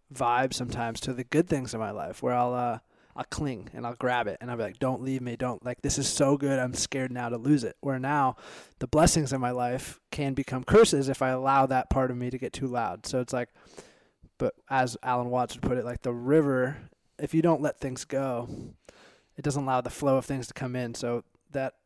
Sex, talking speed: male, 245 wpm